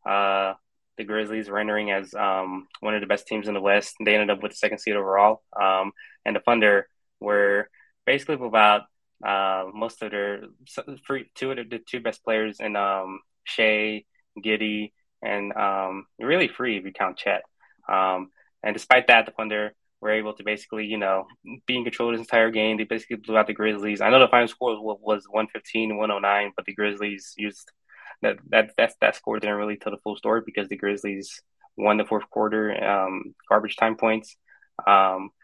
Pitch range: 100-110 Hz